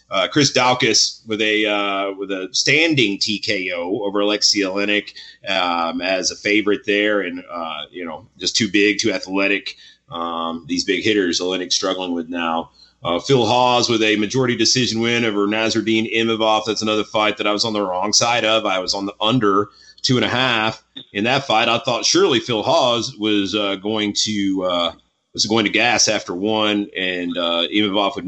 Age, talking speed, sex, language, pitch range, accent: 30-49, 185 wpm, male, English, 100-115 Hz, American